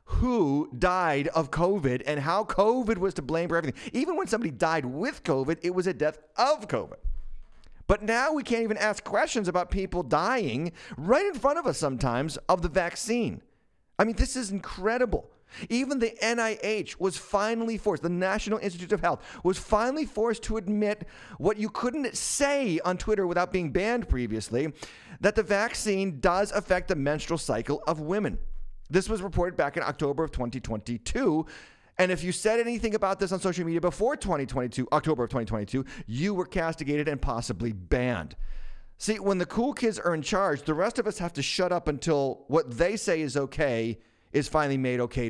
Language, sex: English, male